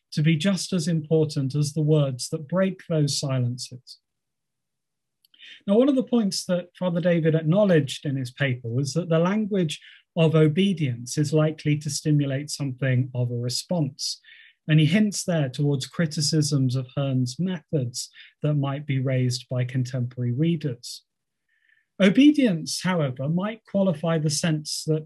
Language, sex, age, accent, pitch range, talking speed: English, male, 30-49, British, 140-180 Hz, 145 wpm